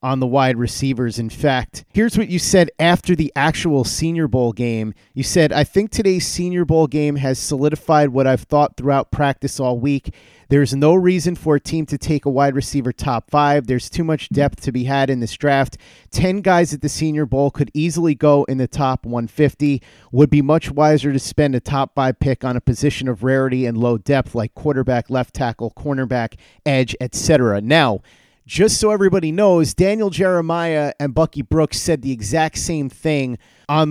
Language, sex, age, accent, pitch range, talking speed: English, male, 30-49, American, 130-155 Hz, 195 wpm